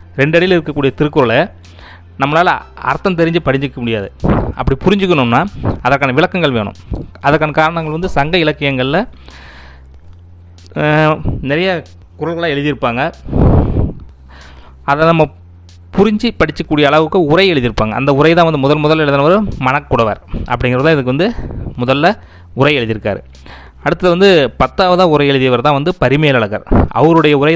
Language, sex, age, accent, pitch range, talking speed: Tamil, male, 20-39, native, 105-155 Hz, 115 wpm